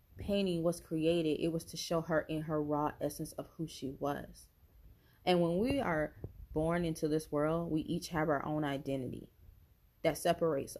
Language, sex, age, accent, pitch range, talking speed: English, female, 20-39, American, 145-170 Hz, 180 wpm